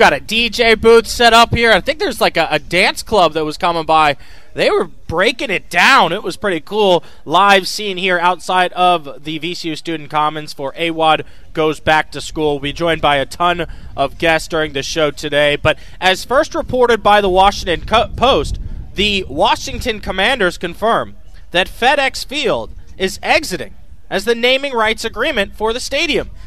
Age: 30-49